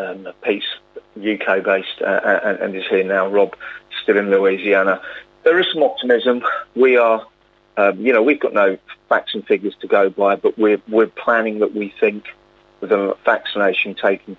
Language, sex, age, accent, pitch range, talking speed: English, male, 40-59, British, 100-125 Hz, 180 wpm